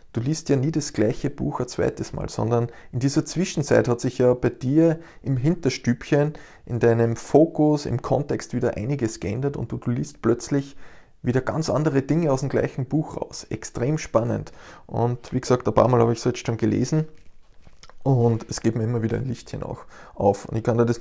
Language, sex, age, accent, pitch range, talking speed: German, male, 20-39, Austrian, 115-140 Hz, 205 wpm